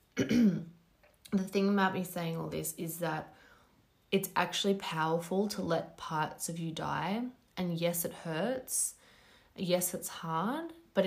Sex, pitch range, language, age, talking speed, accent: female, 165-190 Hz, English, 20-39, 140 wpm, Australian